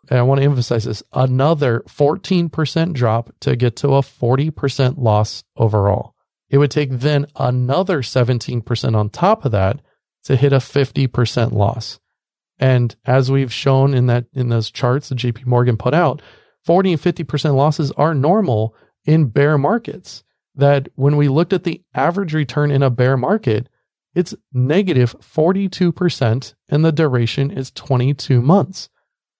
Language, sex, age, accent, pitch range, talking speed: English, male, 40-59, American, 120-145 Hz, 150 wpm